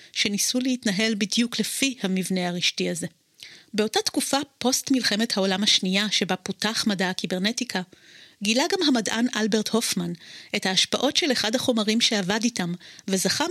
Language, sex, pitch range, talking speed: Hebrew, female, 190-240 Hz, 135 wpm